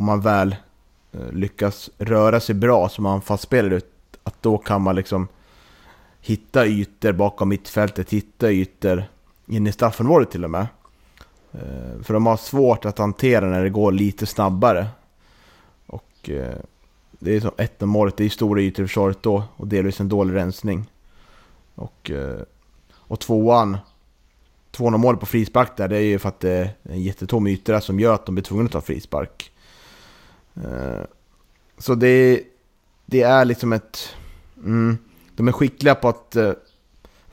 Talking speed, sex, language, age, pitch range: 155 wpm, male, Swedish, 30-49, 95-115 Hz